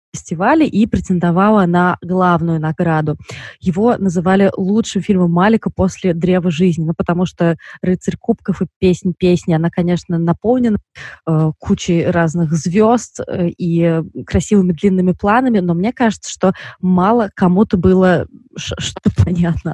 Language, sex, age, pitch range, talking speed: Russian, female, 20-39, 170-205 Hz, 130 wpm